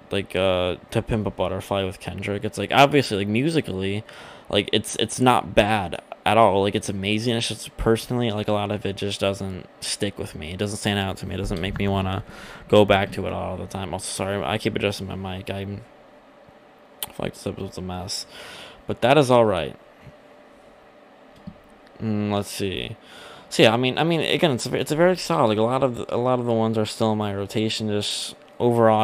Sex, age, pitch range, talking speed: male, 20-39, 100-115 Hz, 215 wpm